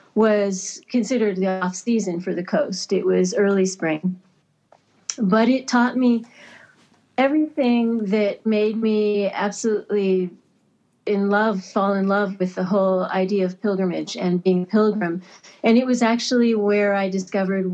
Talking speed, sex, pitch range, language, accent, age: 145 wpm, female, 190-225 Hz, English, American, 40-59